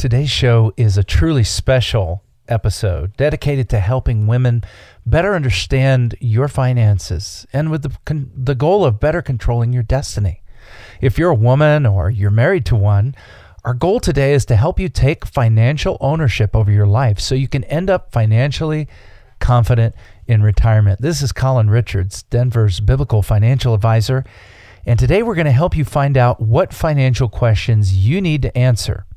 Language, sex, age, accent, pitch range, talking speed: English, male, 40-59, American, 105-140 Hz, 165 wpm